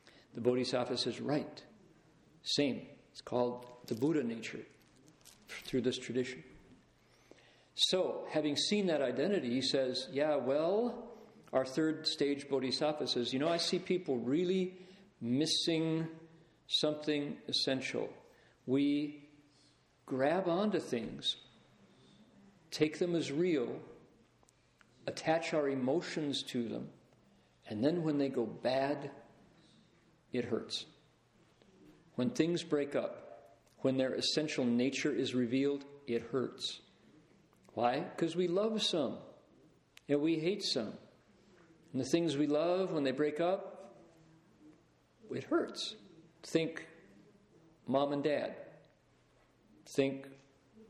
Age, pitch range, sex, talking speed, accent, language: 50-69, 130-165 Hz, male, 110 wpm, American, English